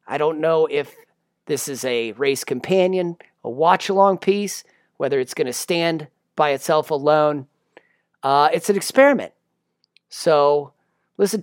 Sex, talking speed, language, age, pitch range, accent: male, 140 wpm, English, 40-59, 145-190 Hz, American